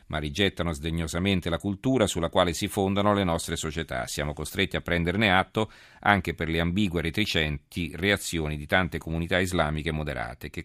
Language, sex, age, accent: Italian, male, 40-59, native